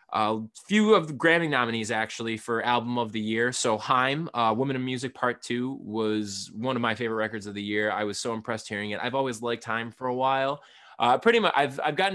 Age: 20-39